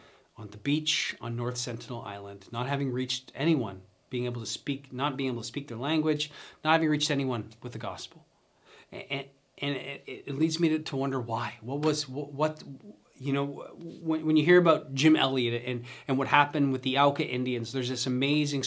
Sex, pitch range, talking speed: male, 130-165 Hz, 195 wpm